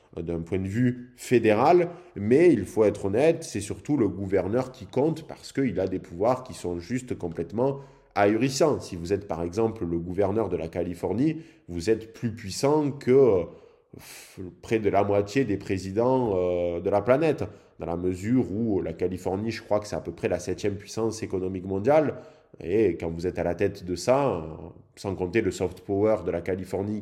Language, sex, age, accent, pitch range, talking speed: French, male, 20-39, French, 90-125 Hz, 190 wpm